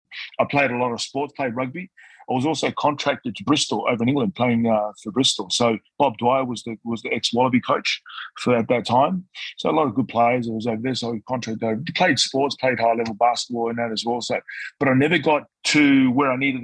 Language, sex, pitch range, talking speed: English, male, 105-120 Hz, 235 wpm